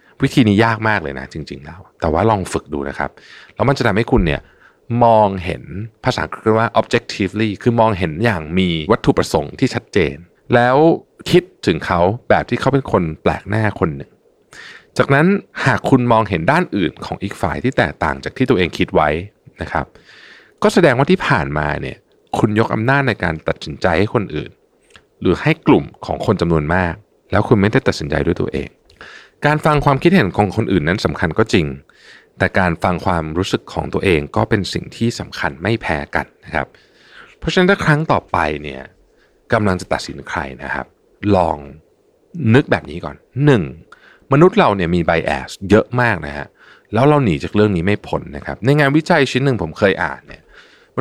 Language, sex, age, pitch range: Thai, male, 60-79, 85-125 Hz